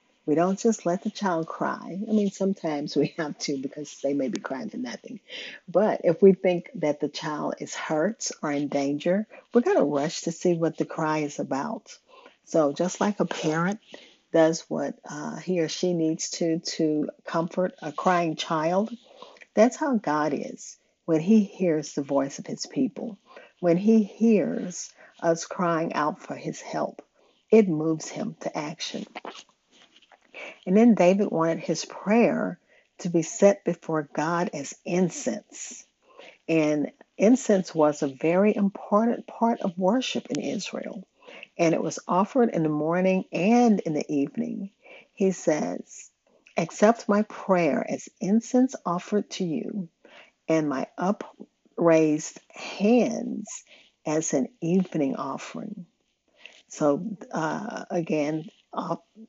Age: 50-69